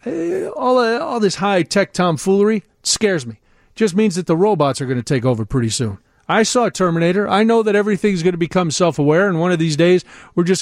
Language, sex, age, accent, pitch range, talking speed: English, male, 40-59, American, 155-210 Hz, 225 wpm